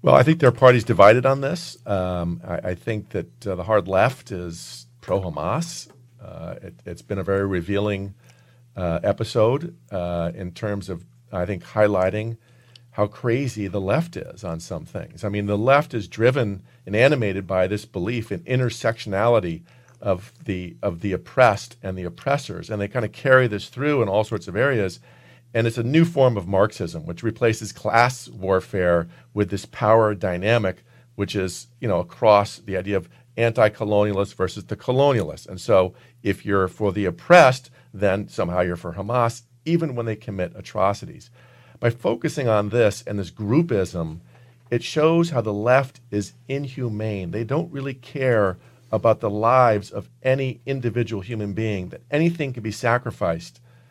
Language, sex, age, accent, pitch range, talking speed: English, male, 50-69, American, 95-125 Hz, 170 wpm